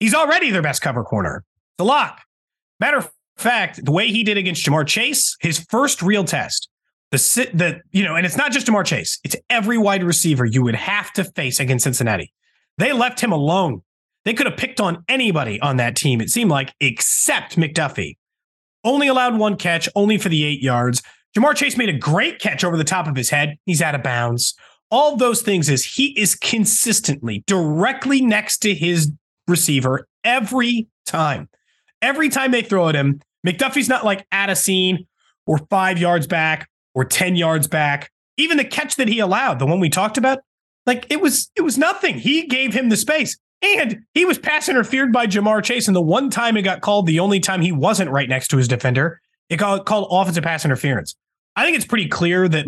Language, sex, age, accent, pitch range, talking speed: English, male, 30-49, American, 150-230 Hz, 205 wpm